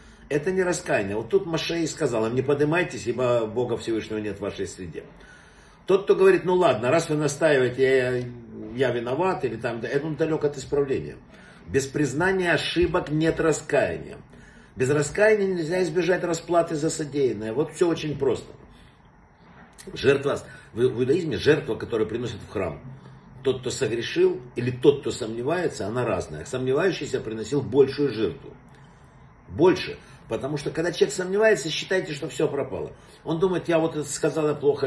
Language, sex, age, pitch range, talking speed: Russian, male, 50-69, 130-175 Hz, 150 wpm